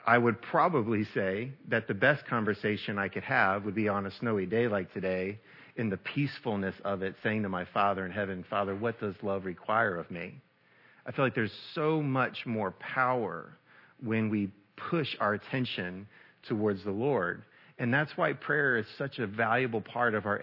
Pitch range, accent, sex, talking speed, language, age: 105-140 Hz, American, male, 190 wpm, English, 40-59